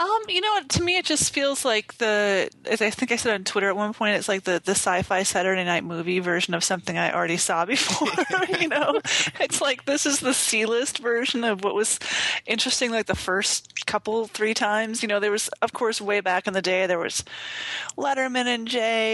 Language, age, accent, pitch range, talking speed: English, 30-49, American, 190-250 Hz, 220 wpm